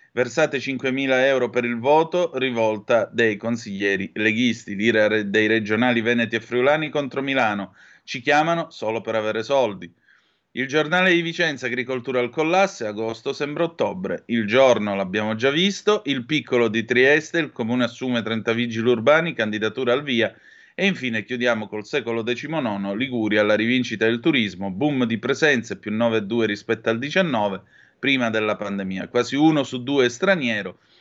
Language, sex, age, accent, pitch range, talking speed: Italian, male, 30-49, native, 110-145 Hz, 150 wpm